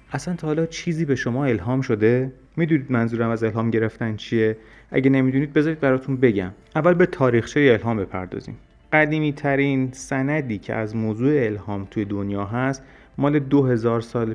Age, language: 30-49, Persian